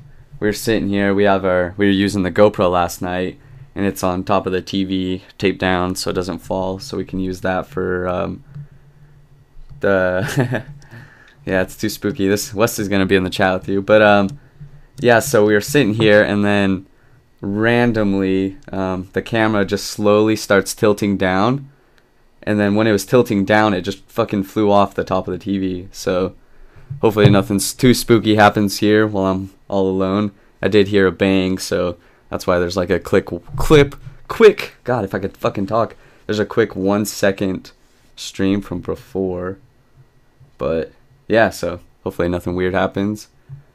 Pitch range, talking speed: 95-130 Hz, 180 wpm